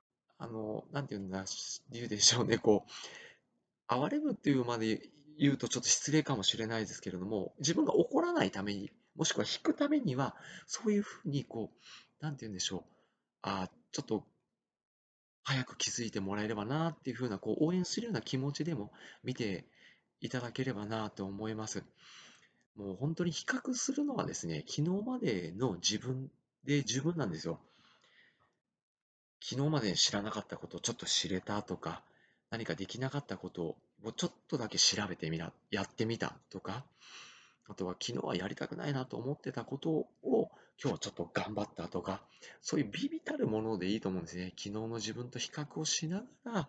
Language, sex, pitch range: Japanese, male, 100-150 Hz